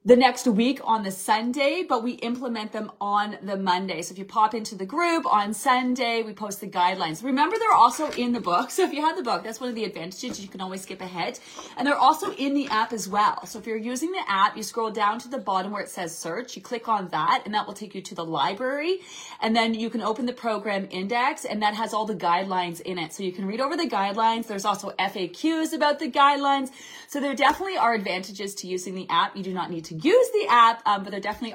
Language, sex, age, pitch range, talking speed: English, female, 30-49, 195-245 Hz, 255 wpm